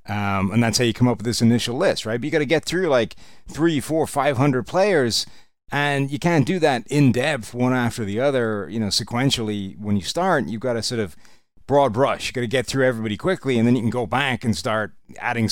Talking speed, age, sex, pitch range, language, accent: 245 wpm, 30-49, male, 105-125 Hz, English, American